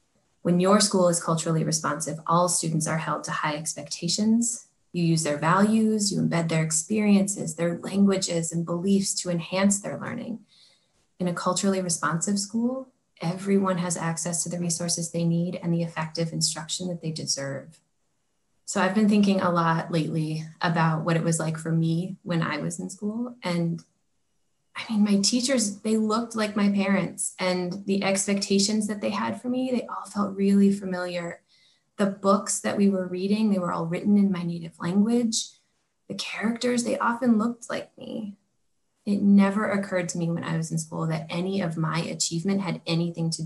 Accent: American